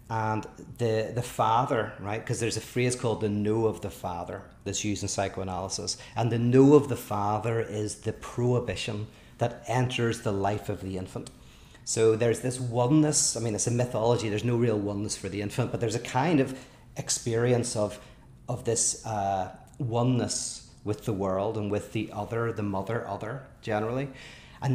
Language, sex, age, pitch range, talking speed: English, male, 30-49, 105-125 Hz, 180 wpm